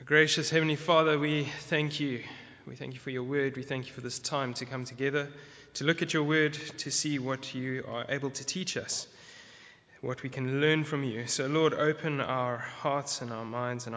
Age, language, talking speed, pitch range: 20-39, English, 215 wpm, 125-155 Hz